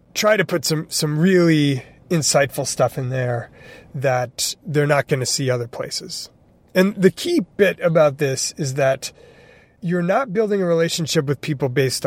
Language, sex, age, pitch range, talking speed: English, male, 30-49, 130-170 Hz, 170 wpm